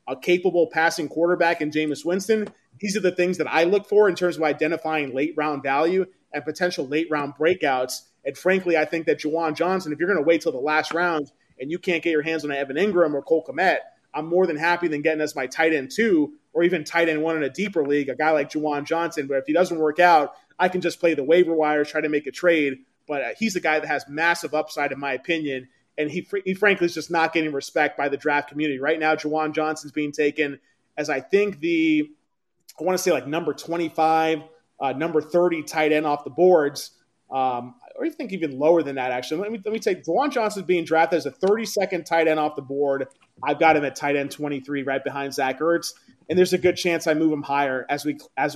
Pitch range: 145-175 Hz